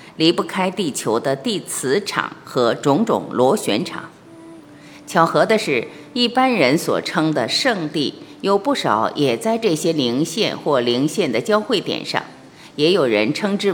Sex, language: female, Chinese